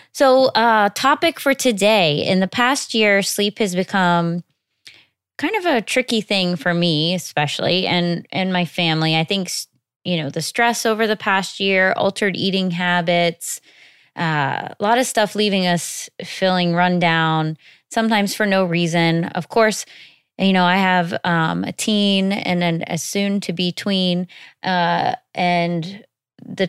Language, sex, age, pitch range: English, female, 20-39, 165-210 Hz